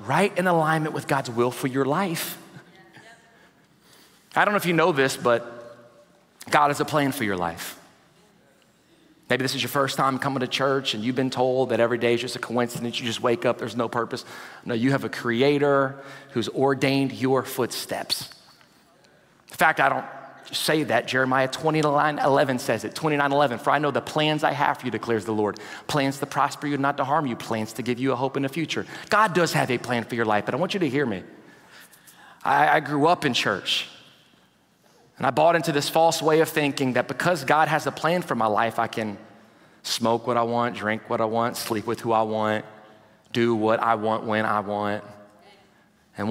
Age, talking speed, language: 30-49, 210 wpm, English